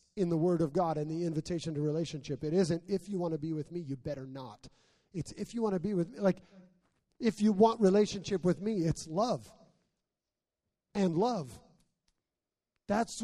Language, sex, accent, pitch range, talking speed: English, male, American, 165-205 Hz, 190 wpm